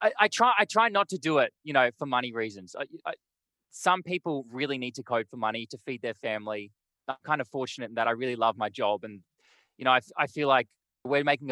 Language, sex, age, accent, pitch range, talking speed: English, male, 20-39, Australian, 120-160 Hz, 235 wpm